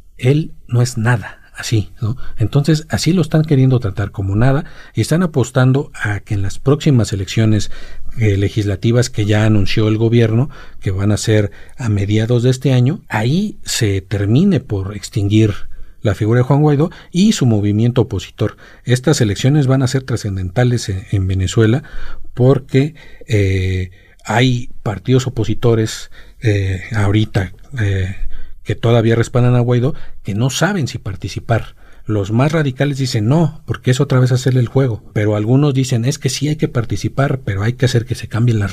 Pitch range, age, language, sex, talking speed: 100-130 Hz, 50-69, Spanish, male, 170 wpm